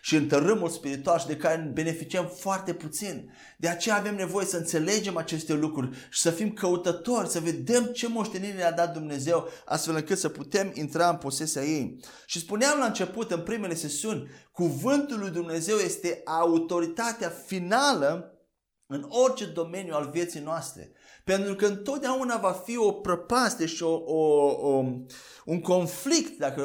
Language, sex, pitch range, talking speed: Romanian, male, 155-205 Hz, 160 wpm